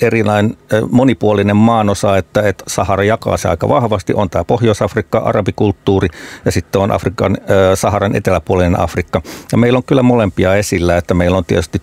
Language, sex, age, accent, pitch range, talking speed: Finnish, male, 50-69, native, 90-105 Hz, 150 wpm